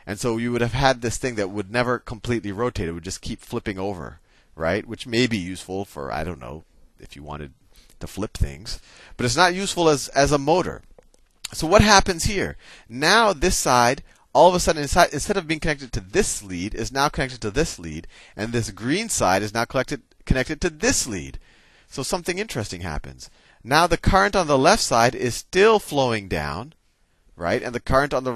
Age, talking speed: 30-49, 210 wpm